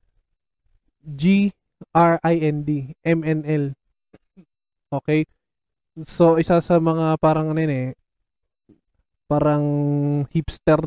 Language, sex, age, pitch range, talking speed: Filipino, male, 20-39, 145-175 Hz, 100 wpm